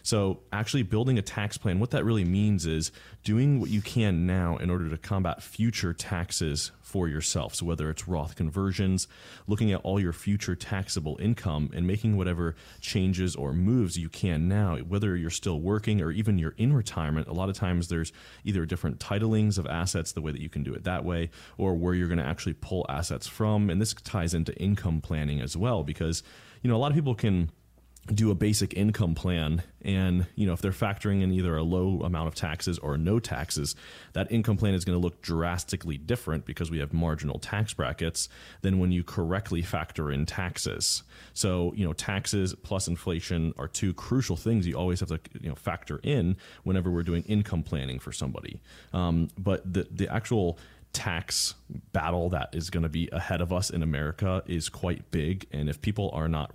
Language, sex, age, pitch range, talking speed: English, male, 30-49, 80-100 Hz, 205 wpm